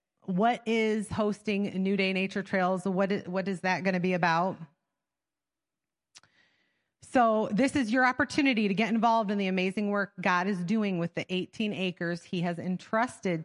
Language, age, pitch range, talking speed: English, 30-49, 190-245 Hz, 165 wpm